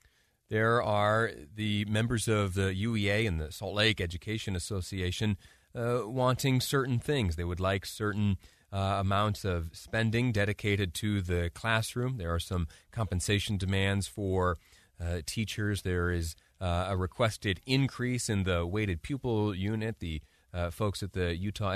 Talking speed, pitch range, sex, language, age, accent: 150 wpm, 90-115 Hz, male, English, 30-49, American